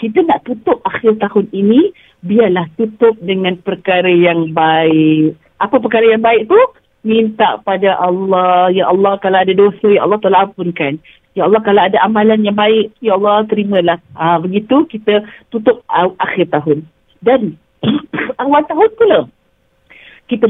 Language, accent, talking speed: English, Indonesian, 145 wpm